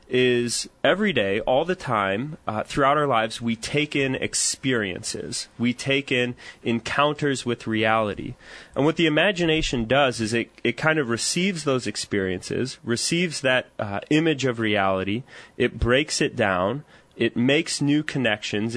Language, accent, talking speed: English, American, 150 wpm